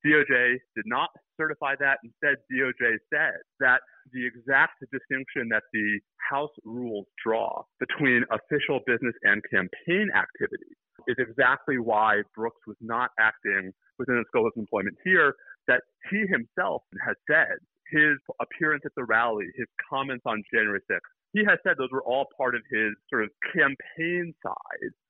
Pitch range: 110-155 Hz